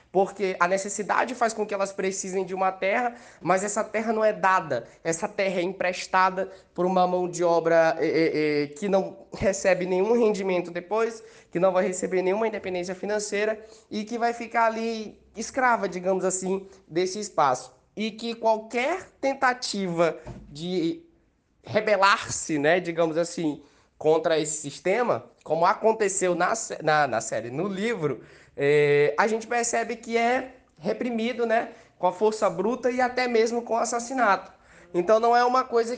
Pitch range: 175-225 Hz